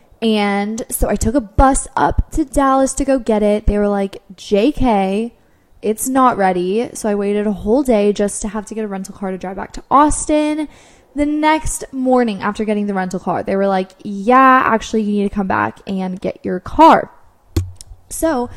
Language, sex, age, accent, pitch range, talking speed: English, female, 10-29, American, 190-245 Hz, 200 wpm